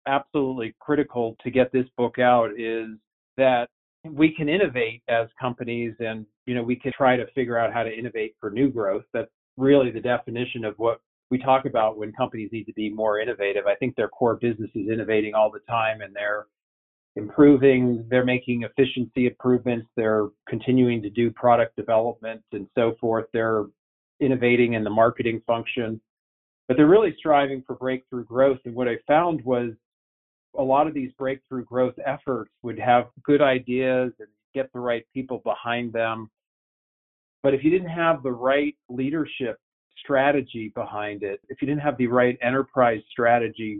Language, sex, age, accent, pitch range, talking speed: English, male, 40-59, American, 115-130 Hz, 175 wpm